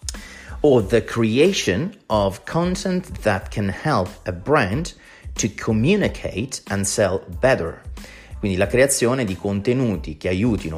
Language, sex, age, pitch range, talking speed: Italian, male, 30-49, 90-110 Hz, 120 wpm